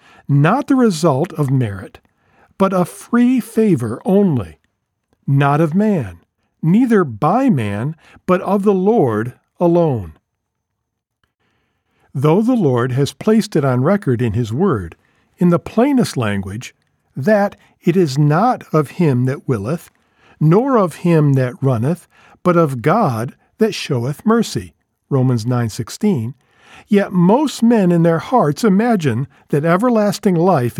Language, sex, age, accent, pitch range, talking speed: English, male, 50-69, American, 125-200 Hz, 130 wpm